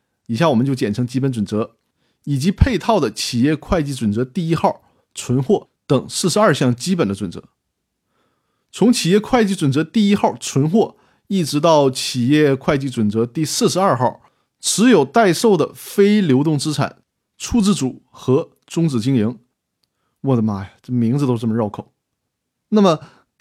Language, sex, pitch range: Chinese, male, 125-180 Hz